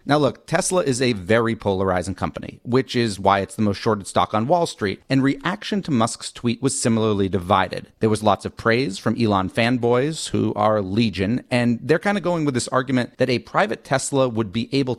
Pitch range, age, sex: 110-145 Hz, 40-59, male